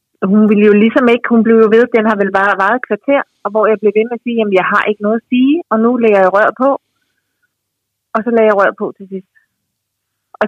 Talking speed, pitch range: 260 wpm, 190-235 Hz